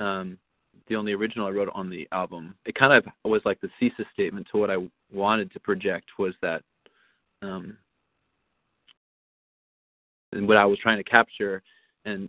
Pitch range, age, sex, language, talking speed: 100-125 Hz, 30-49, male, English, 165 wpm